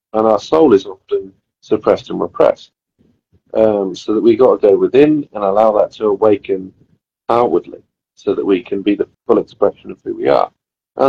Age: 40-59